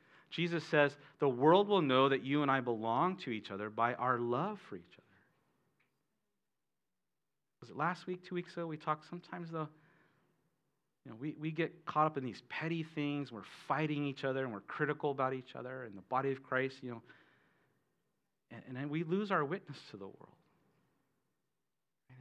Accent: American